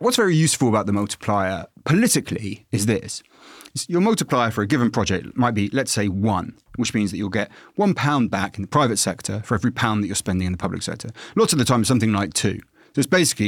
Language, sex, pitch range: English, male, 105-135 Hz